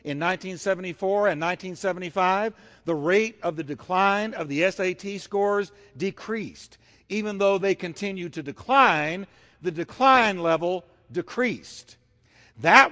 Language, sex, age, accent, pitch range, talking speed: English, male, 60-79, American, 165-220 Hz, 115 wpm